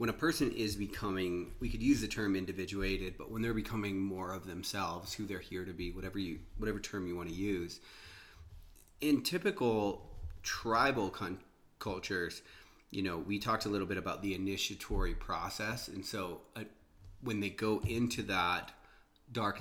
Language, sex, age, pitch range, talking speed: English, male, 30-49, 95-115 Hz, 170 wpm